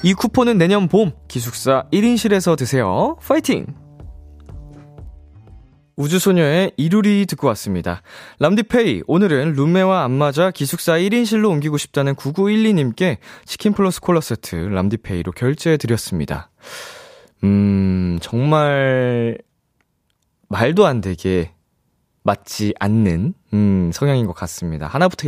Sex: male